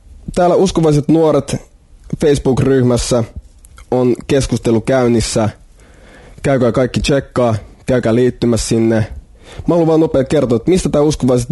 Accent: native